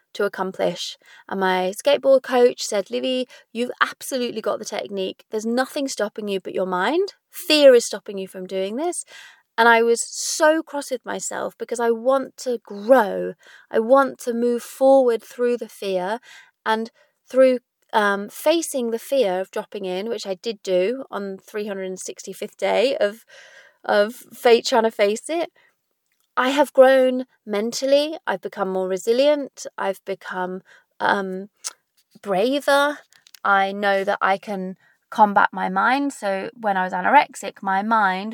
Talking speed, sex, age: 150 wpm, female, 30-49